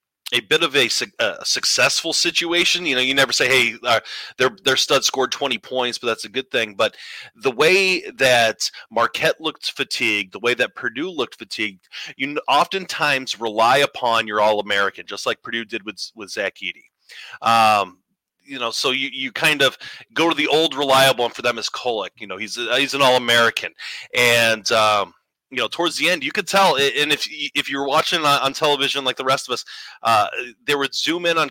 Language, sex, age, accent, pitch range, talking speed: English, male, 30-49, American, 115-165 Hz, 205 wpm